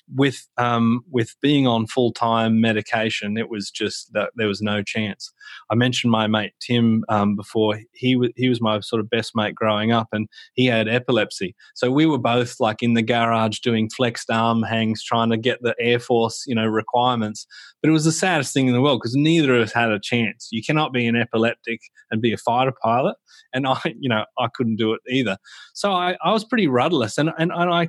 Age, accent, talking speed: 20-39, Australian, 220 wpm